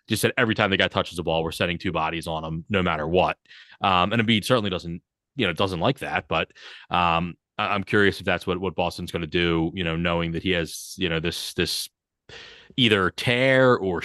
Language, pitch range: English, 90-115 Hz